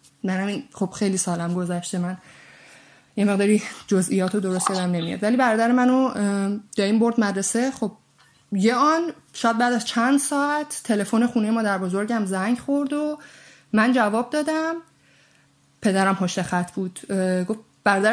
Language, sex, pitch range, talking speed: Persian, female, 195-245 Hz, 140 wpm